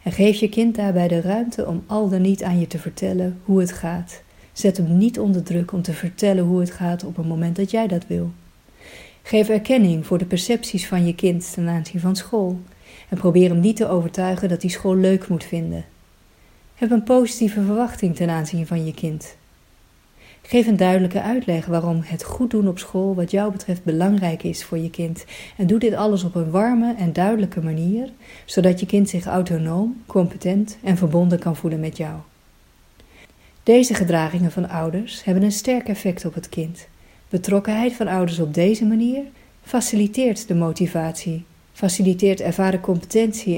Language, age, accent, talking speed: Dutch, 40-59, Dutch, 180 wpm